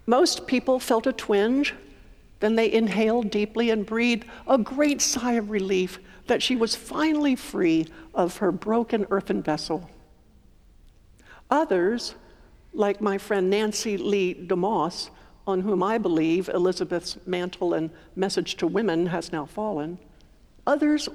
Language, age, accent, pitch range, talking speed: English, 60-79, American, 180-260 Hz, 135 wpm